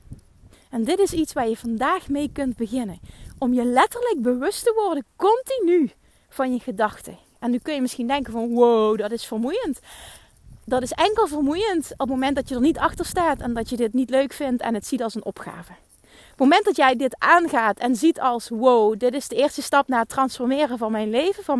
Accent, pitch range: Dutch, 230-305 Hz